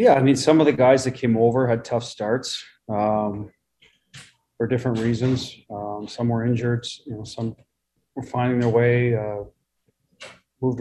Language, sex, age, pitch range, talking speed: English, male, 40-59, 105-120 Hz, 165 wpm